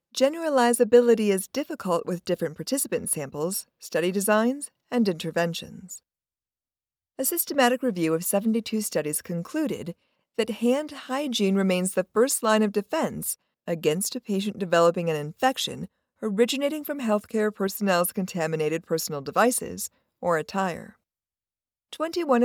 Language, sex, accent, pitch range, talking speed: English, female, American, 170-250 Hz, 115 wpm